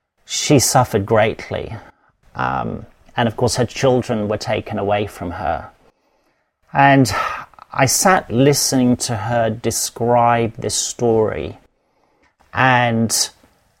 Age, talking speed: 40-59, 105 wpm